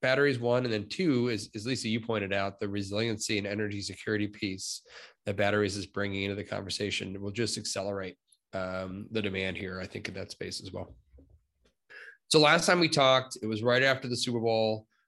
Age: 20-39